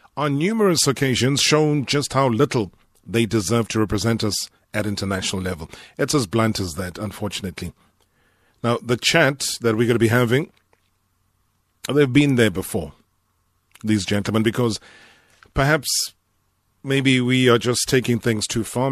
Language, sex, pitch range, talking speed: English, male, 100-125 Hz, 145 wpm